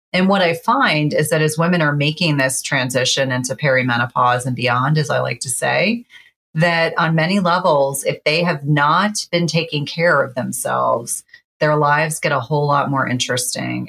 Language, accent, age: English, American, 30-49